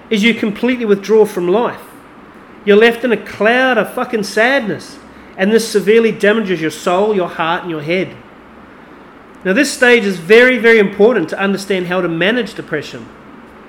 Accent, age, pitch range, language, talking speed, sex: Australian, 40-59, 200-255 Hz, English, 165 wpm, male